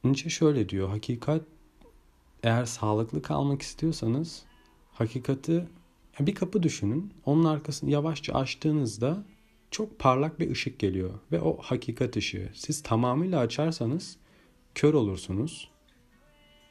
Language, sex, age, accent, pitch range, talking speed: Turkish, male, 40-59, native, 105-150 Hz, 110 wpm